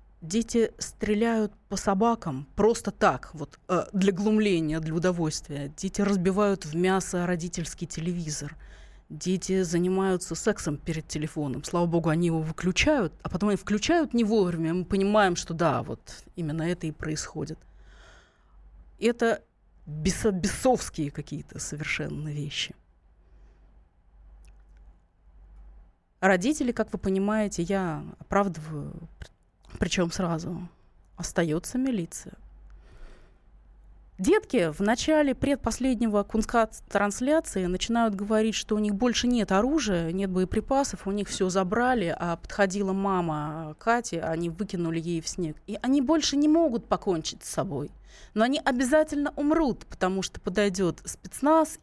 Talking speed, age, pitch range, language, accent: 120 wpm, 20-39, 155-215 Hz, Russian, native